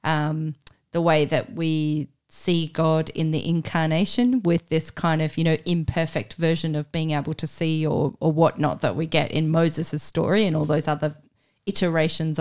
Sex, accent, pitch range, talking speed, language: female, Australian, 155-180 Hz, 180 wpm, English